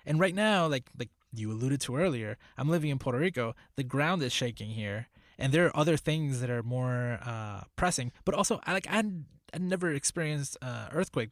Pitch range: 115-145 Hz